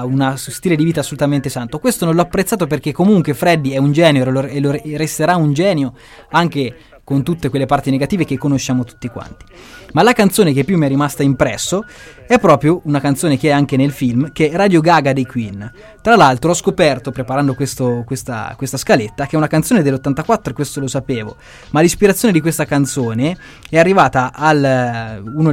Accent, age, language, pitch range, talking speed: native, 20-39, Italian, 135-165 Hz, 185 wpm